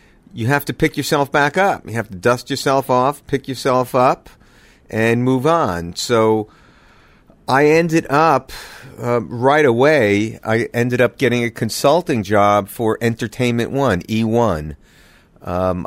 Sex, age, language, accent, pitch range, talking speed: male, 50-69, English, American, 100-120 Hz, 145 wpm